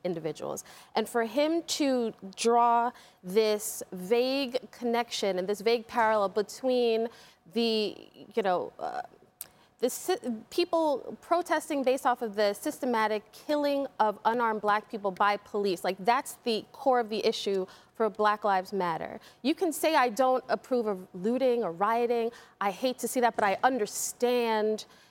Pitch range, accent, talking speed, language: 210-260 Hz, American, 150 wpm, English